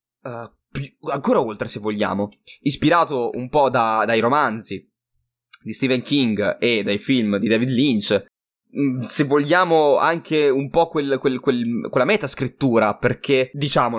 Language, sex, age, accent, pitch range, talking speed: Italian, male, 20-39, native, 115-145 Hz, 125 wpm